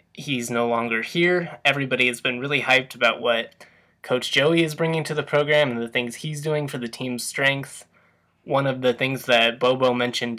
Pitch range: 120-140 Hz